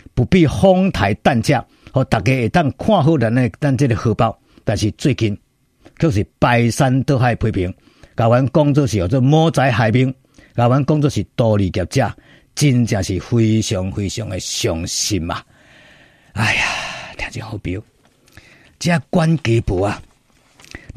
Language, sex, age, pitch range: Chinese, male, 50-69, 110-160 Hz